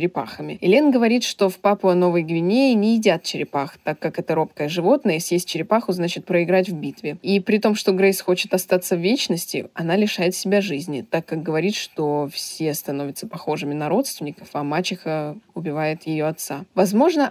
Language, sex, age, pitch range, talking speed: Russian, female, 20-39, 170-200 Hz, 165 wpm